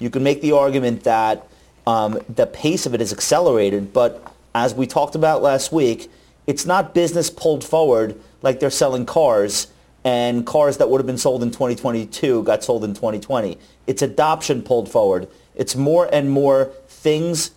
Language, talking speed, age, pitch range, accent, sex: English, 175 wpm, 40-59, 110-140 Hz, American, male